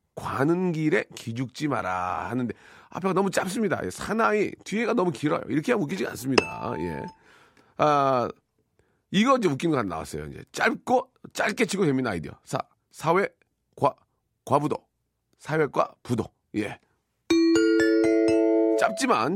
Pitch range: 110-165 Hz